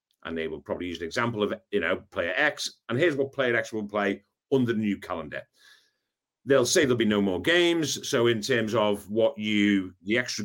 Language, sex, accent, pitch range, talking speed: English, male, British, 100-140 Hz, 220 wpm